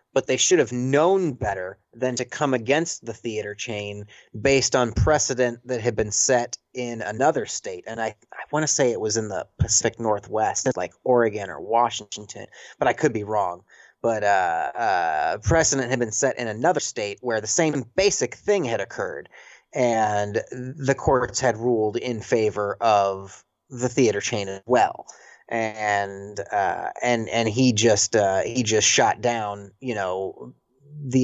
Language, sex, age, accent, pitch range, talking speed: English, male, 30-49, American, 110-130 Hz, 165 wpm